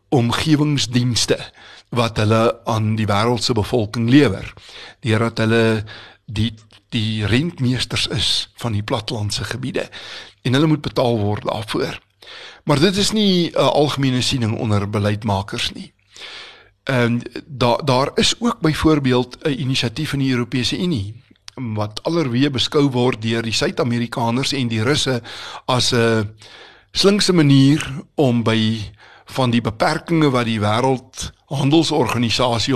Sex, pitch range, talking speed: male, 110-135 Hz, 120 wpm